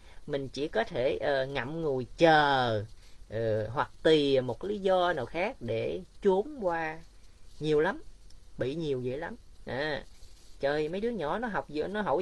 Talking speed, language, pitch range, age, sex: 175 wpm, Vietnamese, 110-170 Hz, 20-39, female